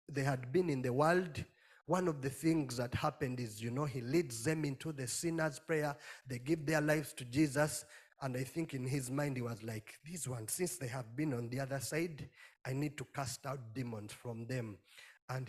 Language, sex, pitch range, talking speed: English, male, 120-155 Hz, 215 wpm